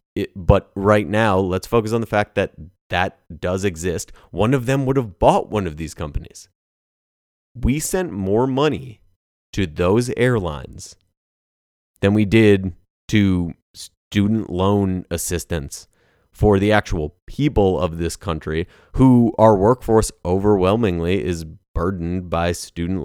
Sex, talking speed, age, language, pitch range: male, 135 wpm, 30-49, English, 85-110 Hz